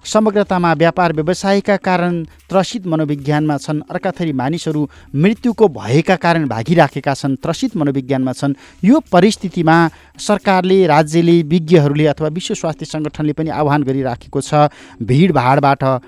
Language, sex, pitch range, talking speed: English, male, 140-180 Hz, 105 wpm